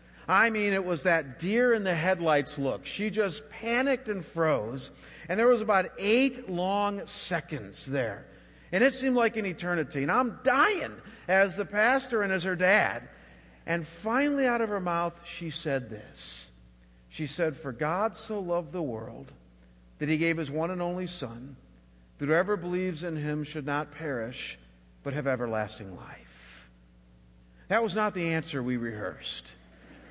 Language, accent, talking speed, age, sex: English, American, 160 wpm, 50-69, male